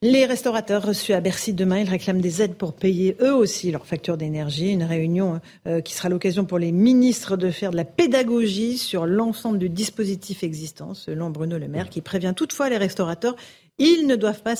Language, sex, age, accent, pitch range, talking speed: French, female, 50-69, French, 175-230 Hz, 195 wpm